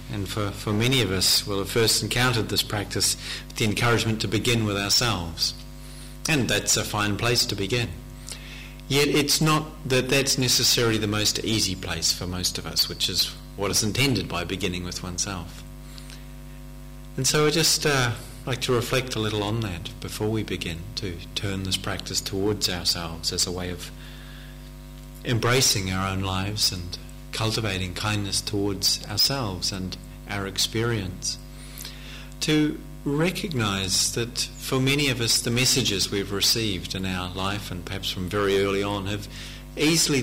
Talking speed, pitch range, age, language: 160 wpm, 90-115 Hz, 30-49, English